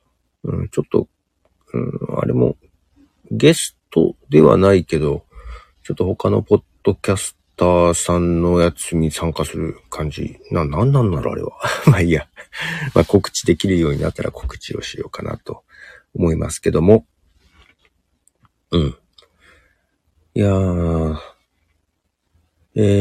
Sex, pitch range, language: male, 80-100 Hz, Japanese